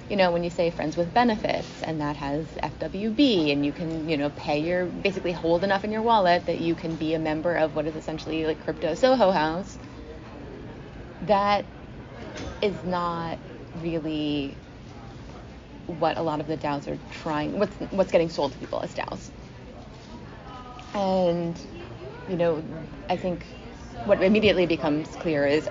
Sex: female